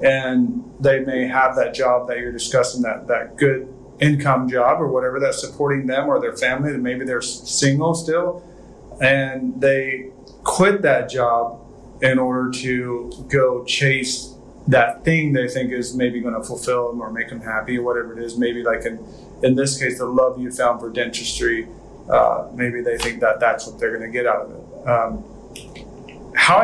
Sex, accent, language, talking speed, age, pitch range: male, American, English, 180 wpm, 30-49, 125-145 Hz